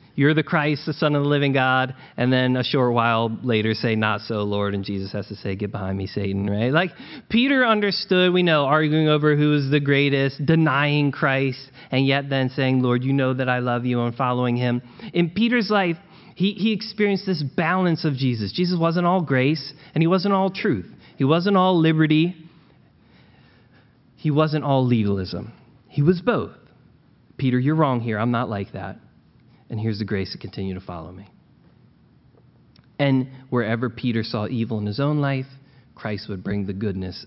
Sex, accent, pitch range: male, American, 110-150 Hz